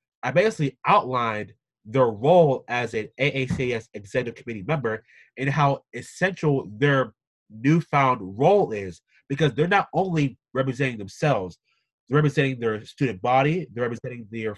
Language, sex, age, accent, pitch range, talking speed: English, male, 20-39, American, 125-155 Hz, 130 wpm